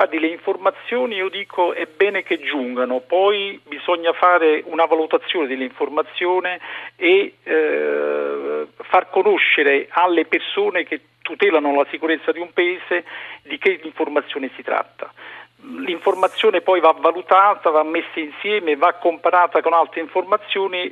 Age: 50-69